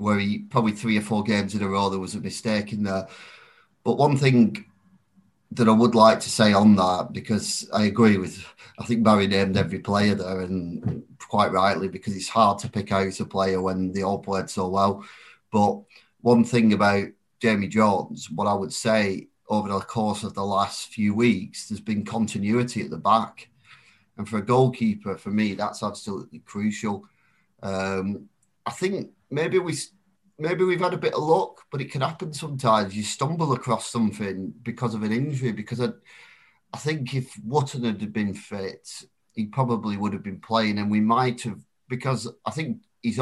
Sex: male